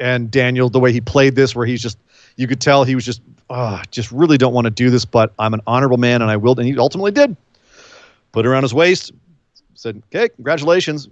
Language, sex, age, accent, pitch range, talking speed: English, male, 40-59, American, 125-190 Hz, 245 wpm